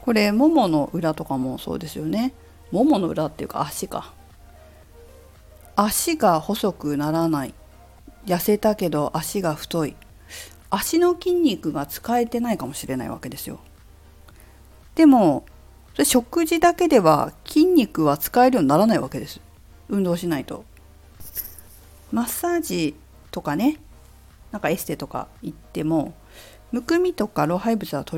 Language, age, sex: Japanese, 50-69, female